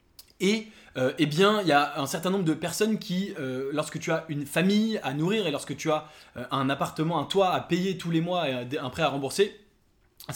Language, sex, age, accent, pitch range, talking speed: English, male, 20-39, French, 145-190 Hz, 240 wpm